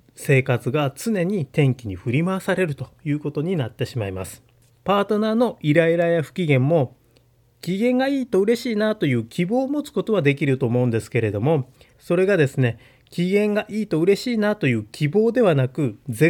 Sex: male